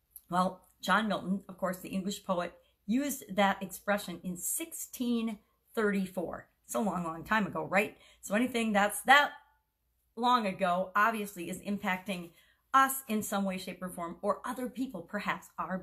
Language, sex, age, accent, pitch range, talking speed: English, female, 50-69, American, 185-245 Hz, 150 wpm